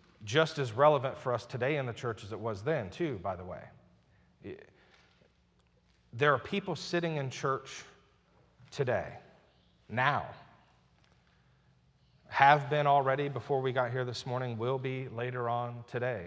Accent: American